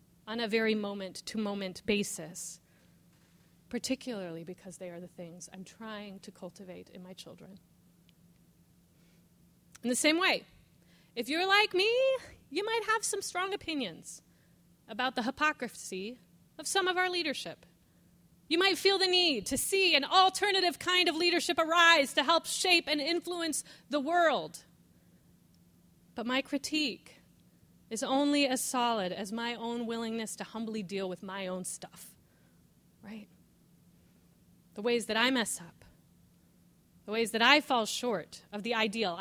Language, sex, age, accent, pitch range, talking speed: English, female, 30-49, American, 195-285 Hz, 145 wpm